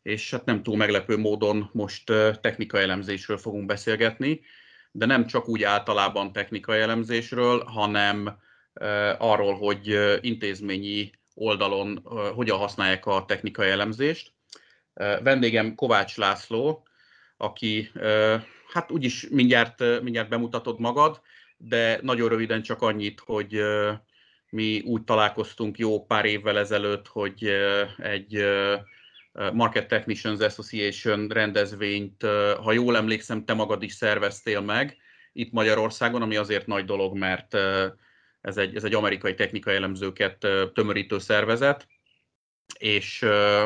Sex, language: male, Hungarian